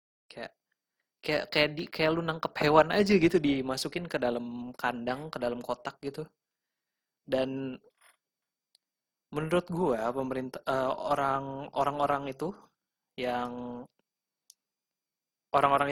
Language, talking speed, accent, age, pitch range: Indonesian, 110 wpm, native, 20-39, 125-145 Hz